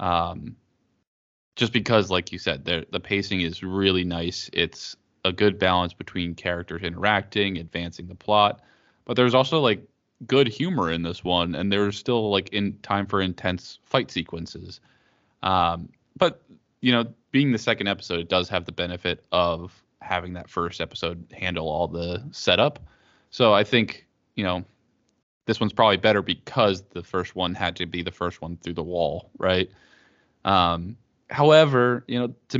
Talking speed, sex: 170 wpm, male